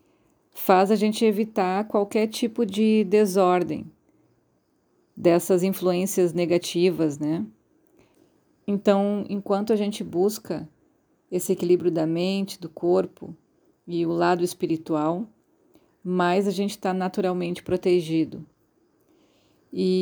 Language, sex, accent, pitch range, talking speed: Portuguese, female, Brazilian, 180-220 Hz, 100 wpm